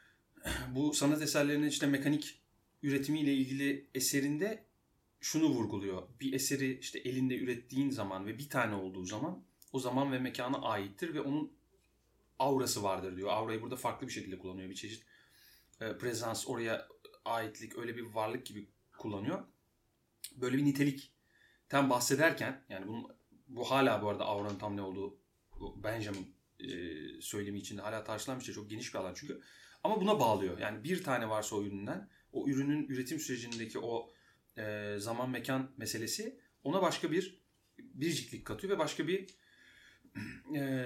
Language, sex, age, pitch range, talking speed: Turkish, male, 30-49, 105-145 Hz, 145 wpm